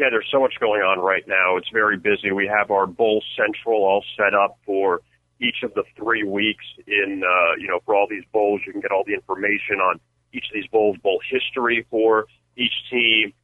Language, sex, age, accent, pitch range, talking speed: English, male, 40-59, American, 95-110 Hz, 220 wpm